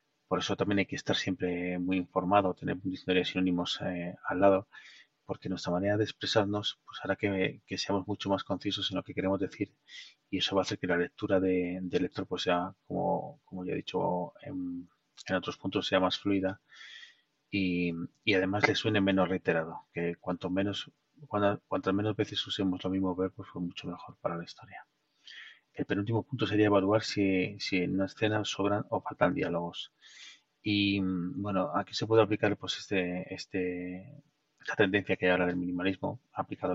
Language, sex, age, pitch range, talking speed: Spanish, male, 30-49, 90-105 Hz, 190 wpm